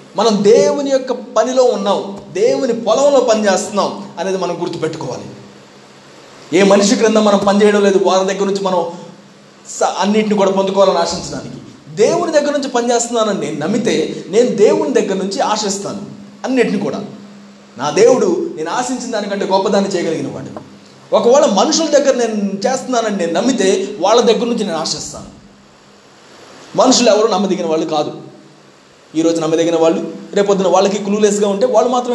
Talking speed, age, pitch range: 135 wpm, 20-39, 170-235 Hz